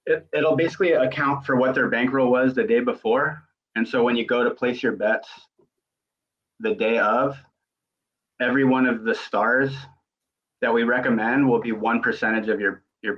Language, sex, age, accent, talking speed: English, male, 30-49, American, 180 wpm